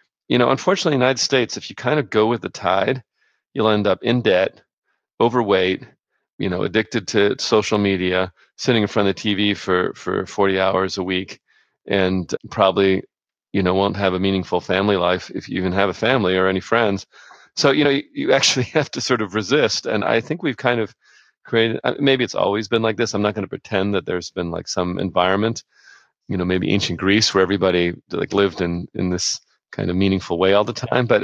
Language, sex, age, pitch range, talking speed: English, male, 40-59, 95-110 Hz, 215 wpm